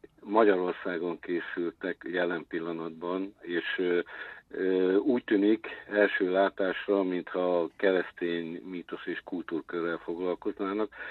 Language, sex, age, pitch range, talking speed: Hungarian, male, 50-69, 95-110 Hz, 85 wpm